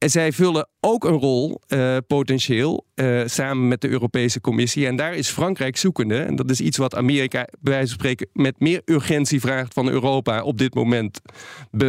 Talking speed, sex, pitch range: 195 wpm, male, 125-150 Hz